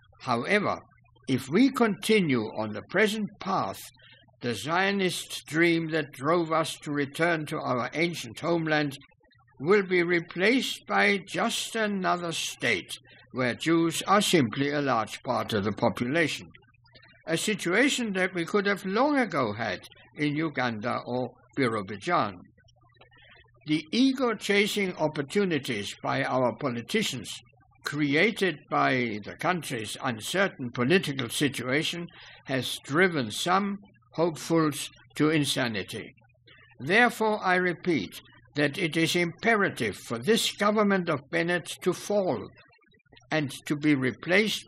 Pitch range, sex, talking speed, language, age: 125-185 Hz, male, 115 wpm, English, 60-79